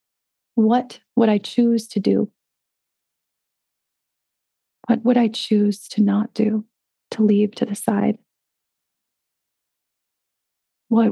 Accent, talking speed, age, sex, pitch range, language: American, 105 wpm, 30-49, female, 200-225 Hz, English